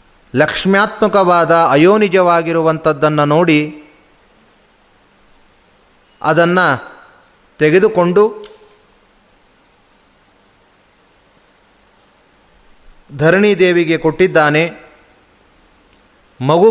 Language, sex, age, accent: Kannada, male, 30-49, native